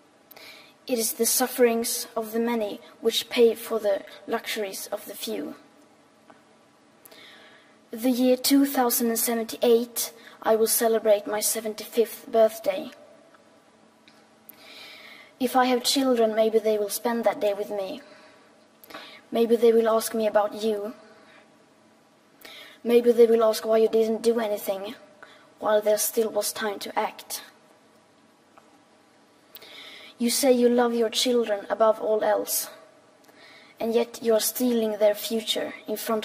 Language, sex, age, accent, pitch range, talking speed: English, female, 20-39, Norwegian, 215-245 Hz, 125 wpm